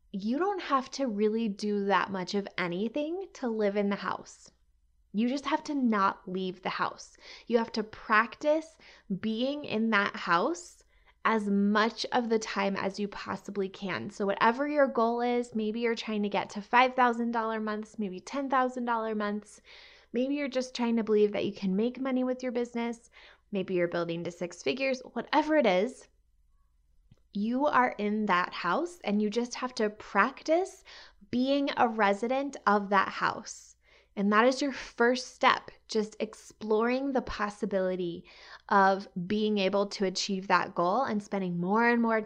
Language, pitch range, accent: English, 200-255 Hz, American